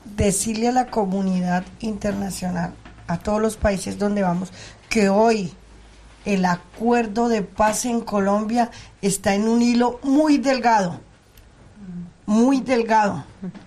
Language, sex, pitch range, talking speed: Swedish, female, 190-240 Hz, 120 wpm